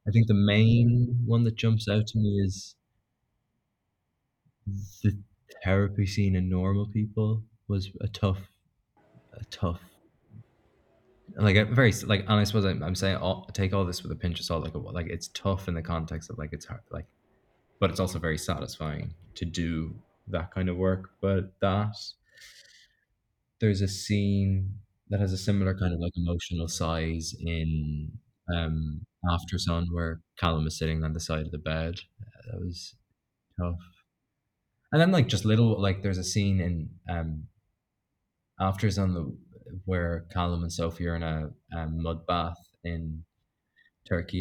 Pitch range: 85-105 Hz